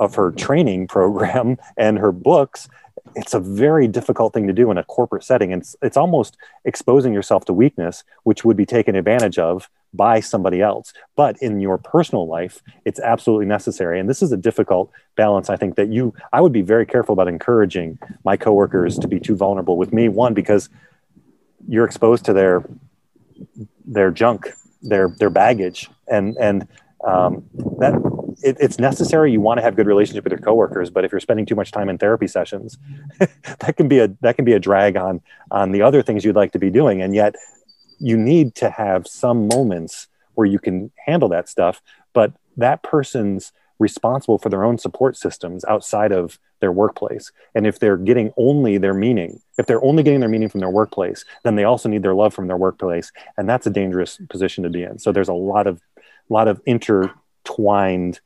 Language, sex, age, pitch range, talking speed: English, male, 30-49, 95-120 Hz, 200 wpm